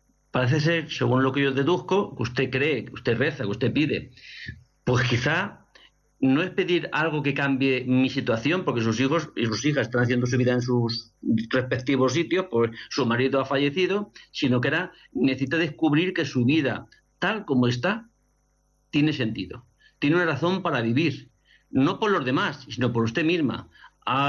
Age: 50-69